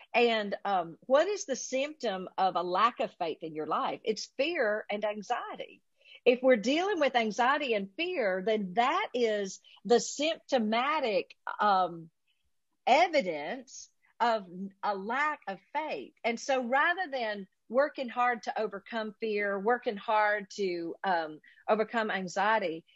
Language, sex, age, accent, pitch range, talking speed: English, female, 50-69, American, 190-260 Hz, 135 wpm